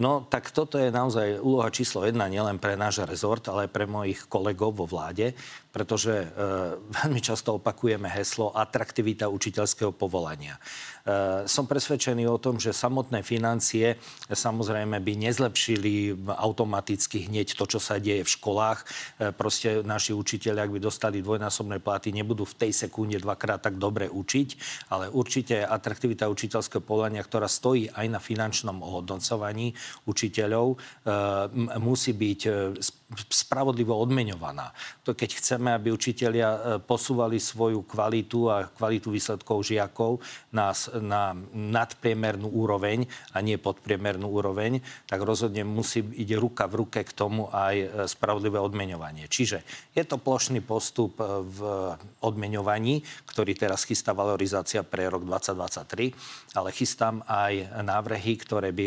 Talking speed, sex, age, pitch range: 140 wpm, male, 40-59, 100-115 Hz